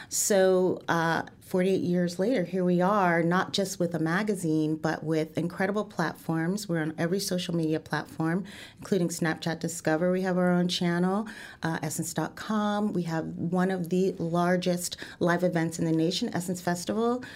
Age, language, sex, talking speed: 30-49, English, female, 155 wpm